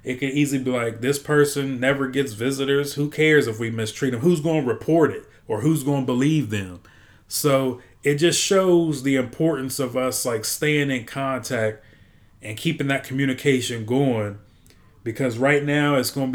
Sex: male